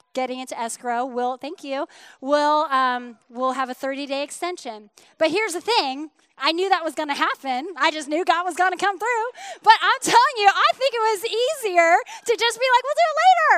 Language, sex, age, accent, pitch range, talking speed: English, female, 20-39, American, 270-380 Hz, 220 wpm